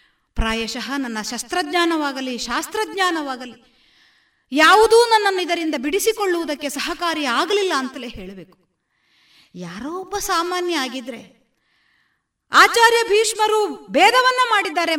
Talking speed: 75 wpm